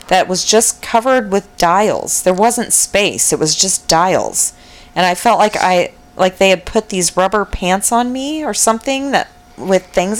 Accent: American